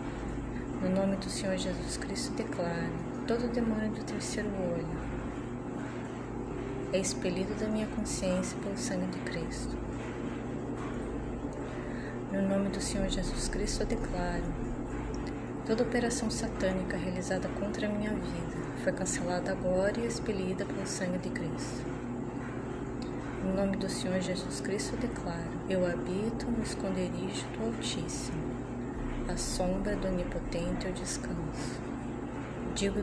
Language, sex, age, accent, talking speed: English, female, 20-39, Brazilian, 120 wpm